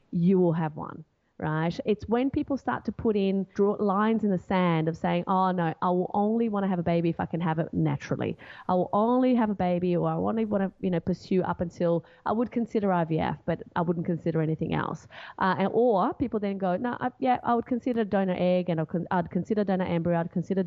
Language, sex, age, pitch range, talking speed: English, female, 30-49, 175-225 Hz, 240 wpm